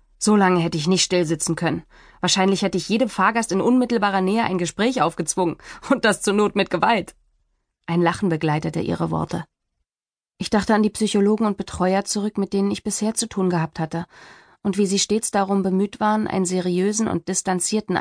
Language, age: German, 30-49